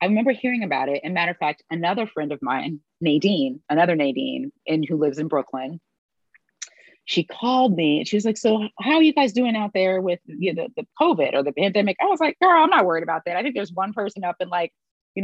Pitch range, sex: 150-200 Hz, female